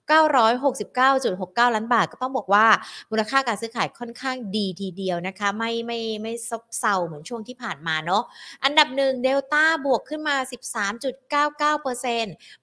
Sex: female